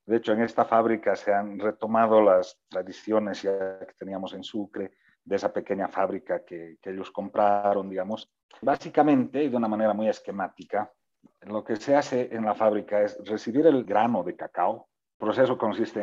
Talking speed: 170 wpm